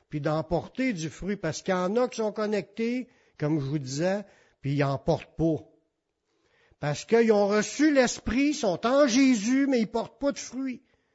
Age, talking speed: 60-79, 195 wpm